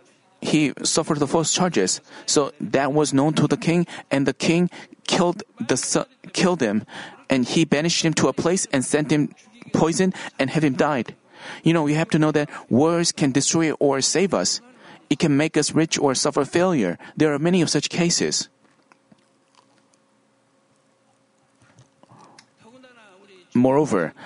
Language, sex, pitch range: Korean, male, 130-170 Hz